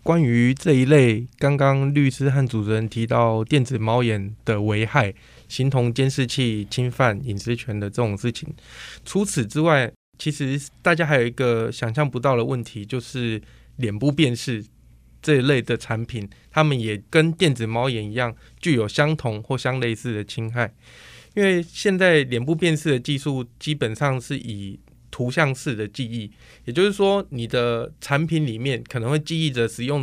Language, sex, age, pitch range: Chinese, male, 20-39, 115-145 Hz